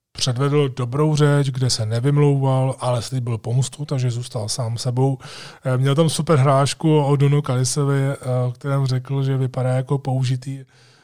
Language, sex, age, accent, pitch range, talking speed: Czech, male, 20-39, native, 125-145 Hz, 145 wpm